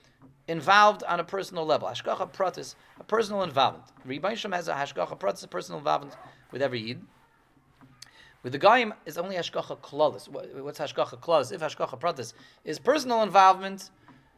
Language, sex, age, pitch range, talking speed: English, male, 30-49, 130-175 Hz, 155 wpm